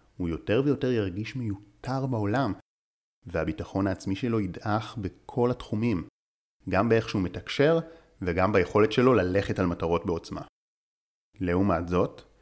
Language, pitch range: Hebrew, 95-125 Hz